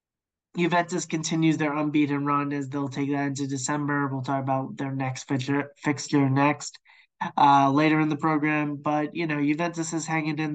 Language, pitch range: English, 140-155 Hz